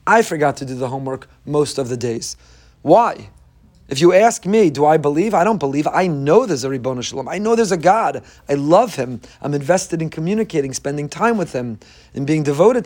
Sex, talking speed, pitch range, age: male, 215 wpm, 125-165 Hz, 30-49